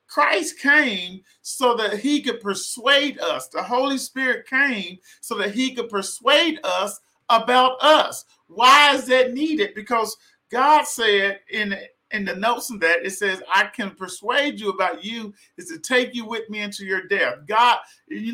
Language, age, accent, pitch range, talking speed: English, 40-59, American, 210-255 Hz, 170 wpm